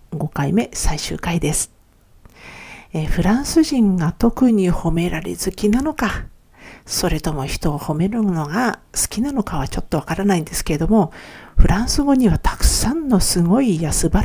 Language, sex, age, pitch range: Japanese, female, 50-69, 165-225 Hz